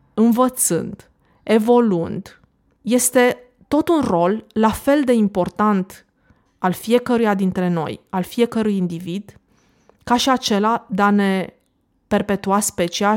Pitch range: 185-230 Hz